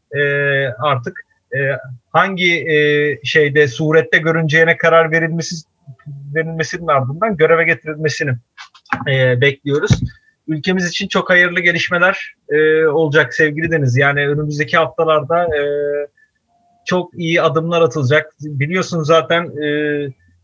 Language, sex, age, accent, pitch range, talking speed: Turkish, male, 30-49, native, 140-170 Hz, 105 wpm